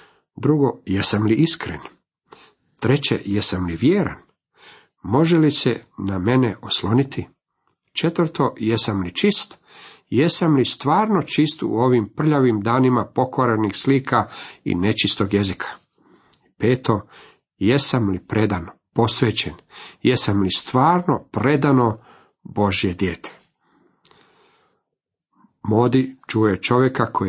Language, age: Croatian, 50-69